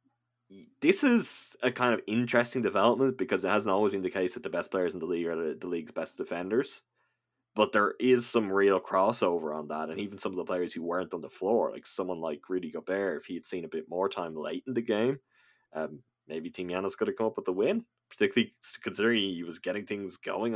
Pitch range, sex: 95-130 Hz, male